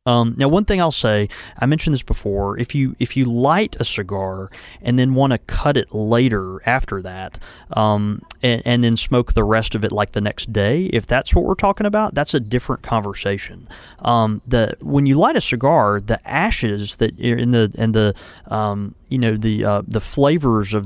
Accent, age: American, 30-49